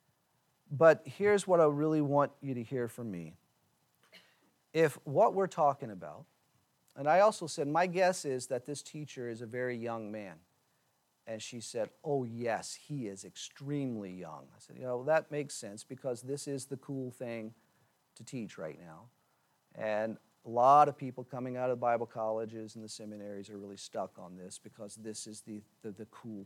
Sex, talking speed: male, 185 wpm